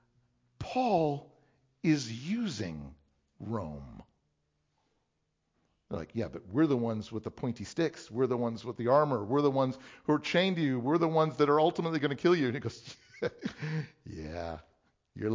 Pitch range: 110-175 Hz